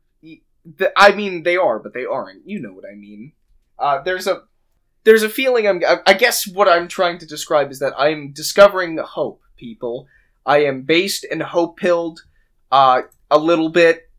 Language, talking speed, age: English, 175 wpm, 20-39